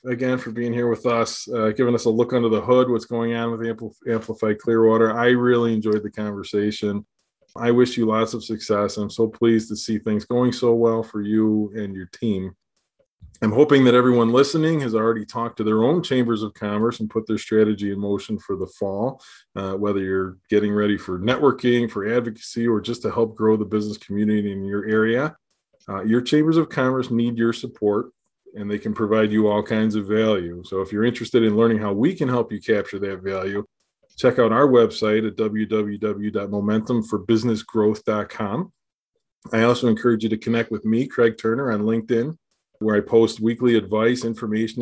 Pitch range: 105-115 Hz